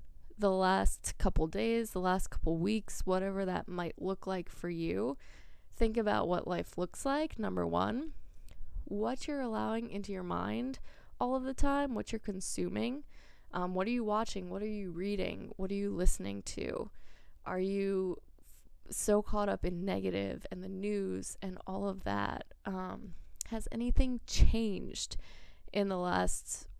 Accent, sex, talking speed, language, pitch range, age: American, female, 160 wpm, English, 175-220 Hz, 20-39